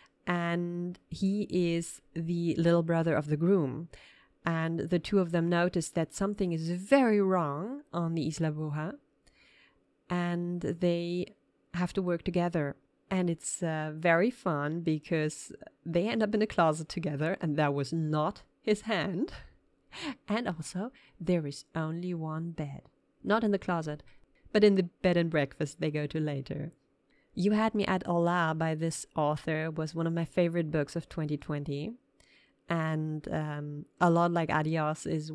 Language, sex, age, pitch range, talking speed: English, female, 30-49, 155-175 Hz, 160 wpm